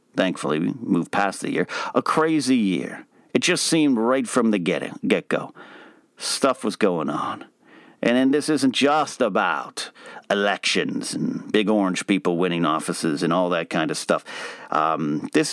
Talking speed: 160 wpm